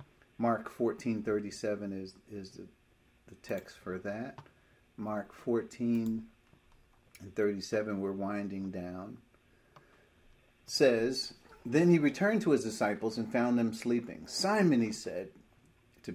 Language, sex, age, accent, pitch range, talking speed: English, male, 50-69, American, 100-120 Hz, 120 wpm